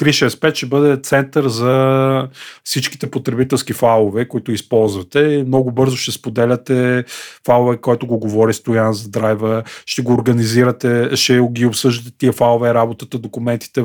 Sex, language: male, Bulgarian